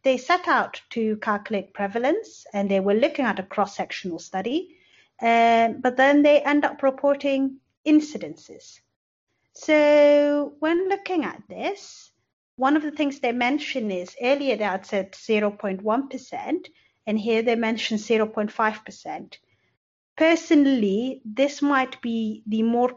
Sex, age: female, 30-49